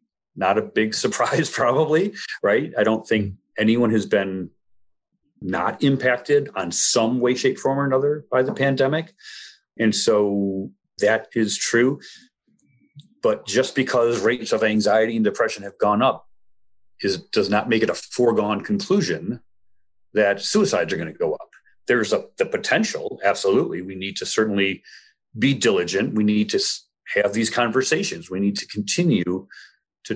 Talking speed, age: 155 wpm, 40-59